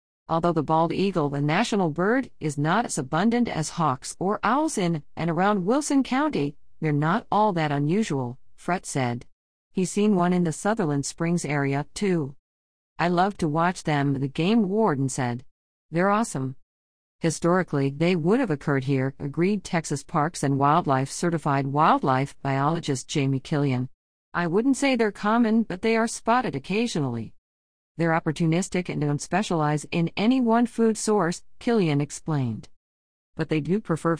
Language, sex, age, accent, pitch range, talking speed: English, female, 50-69, American, 140-195 Hz, 155 wpm